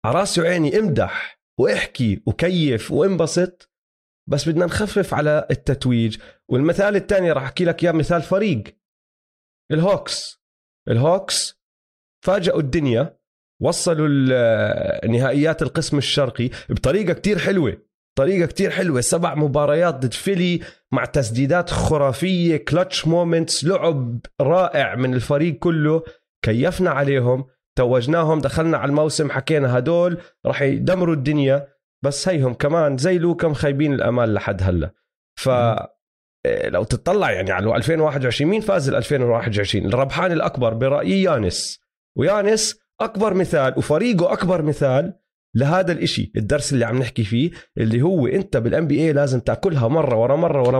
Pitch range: 125-175 Hz